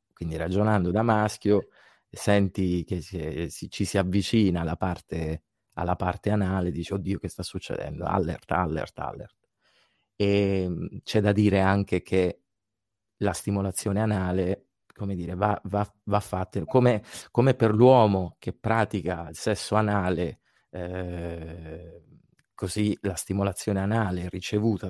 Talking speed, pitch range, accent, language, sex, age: 120 wpm, 90-105 Hz, native, Italian, male, 30-49